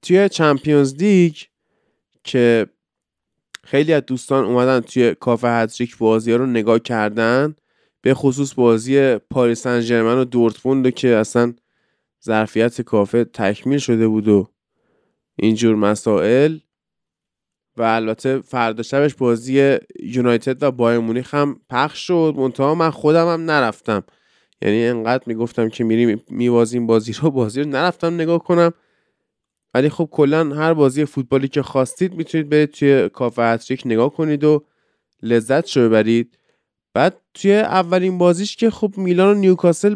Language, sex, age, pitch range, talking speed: Persian, male, 20-39, 120-170 Hz, 130 wpm